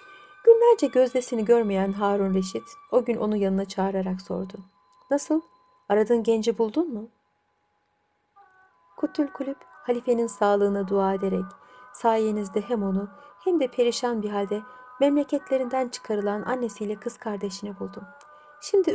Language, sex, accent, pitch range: Turkish, female, native, 200-300 Hz